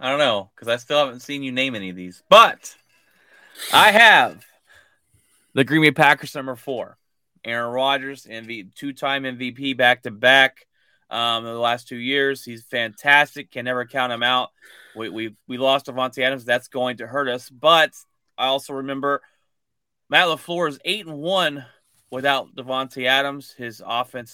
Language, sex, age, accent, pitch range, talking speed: English, male, 30-49, American, 115-135 Hz, 170 wpm